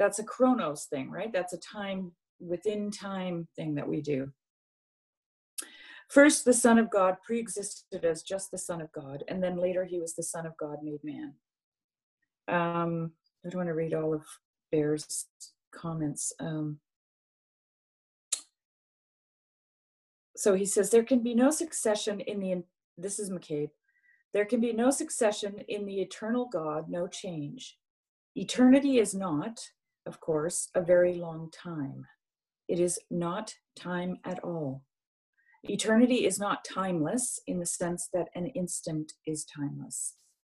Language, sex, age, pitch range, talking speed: English, female, 40-59, 165-215 Hz, 145 wpm